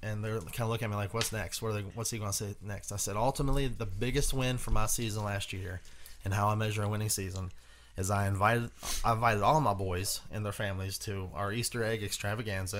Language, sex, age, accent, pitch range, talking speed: English, male, 20-39, American, 95-120 Hz, 250 wpm